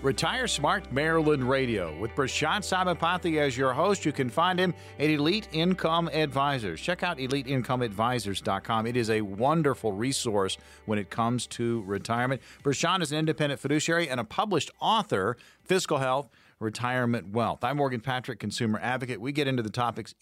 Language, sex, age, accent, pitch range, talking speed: English, male, 40-59, American, 110-155 Hz, 160 wpm